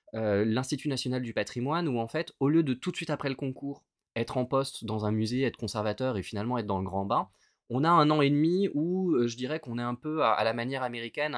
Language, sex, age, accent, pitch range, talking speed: French, male, 20-39, French, 105-130 Hz, 270 wpm